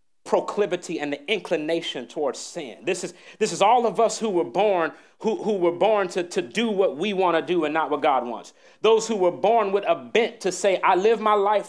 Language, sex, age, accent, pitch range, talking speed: English, male, 30-49, American, 180-230 Hz, 235 wpm